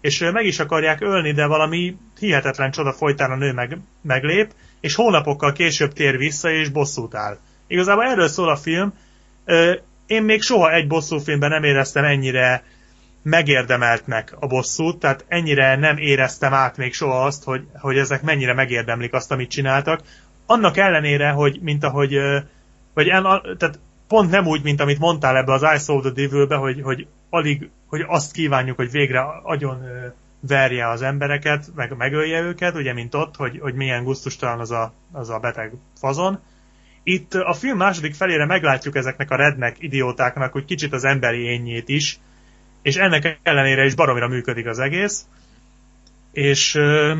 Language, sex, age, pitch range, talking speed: Hungarian, male, 30-49, 130-165 Hz, 165 wpm